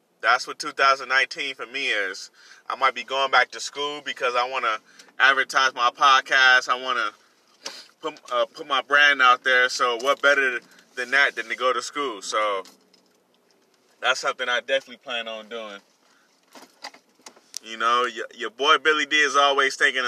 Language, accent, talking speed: English, American, 170 wpm